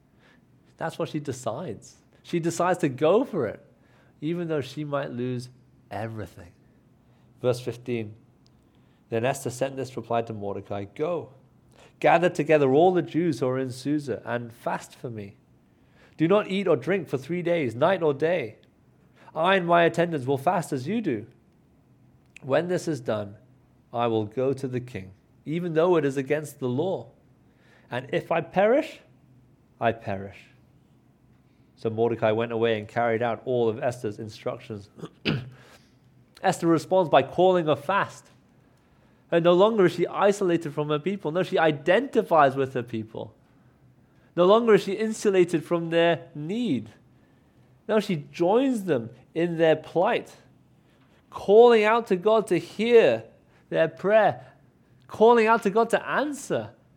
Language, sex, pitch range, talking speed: English, male, 125-190 Hz, 150 wpm